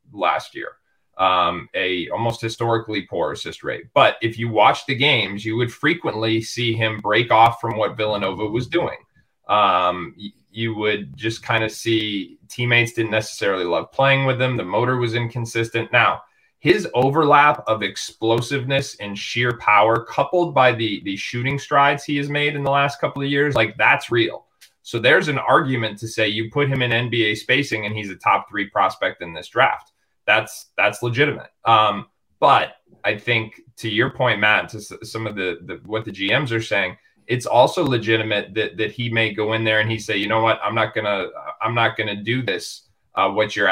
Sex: male